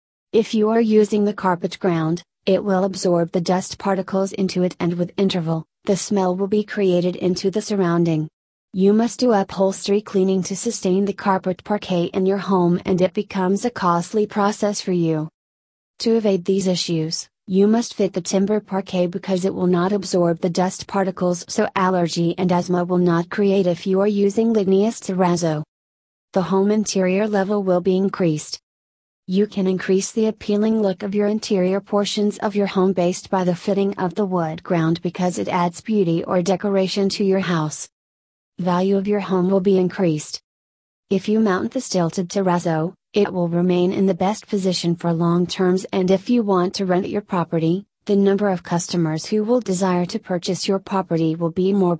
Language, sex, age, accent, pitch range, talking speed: English, female, 30-49, American, 175-200 Hz, 185 wpm